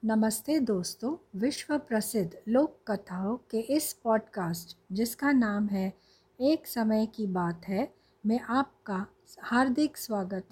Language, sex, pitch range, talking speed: Hindi, female, 200-265 Hz, 120 wpm